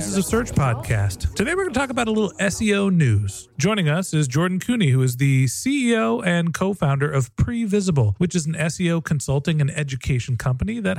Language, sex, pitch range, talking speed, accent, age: English, male, 140-190 Hz, 200 wpm, American, 40-59